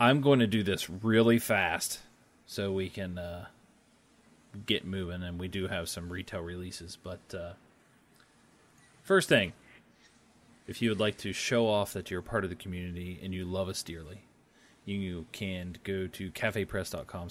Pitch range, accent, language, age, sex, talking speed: 95-120 Hz, American, English, 30-49, male, 165 wpm